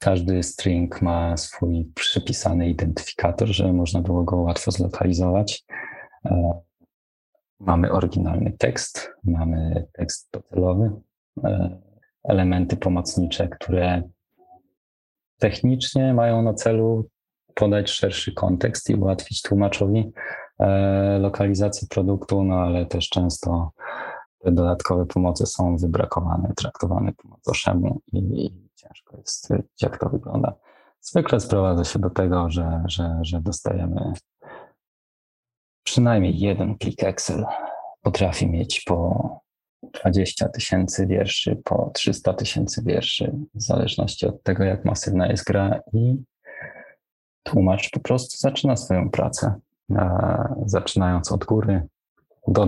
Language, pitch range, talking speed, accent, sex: Polish, 85-105 Hz, 105 wpm, native, male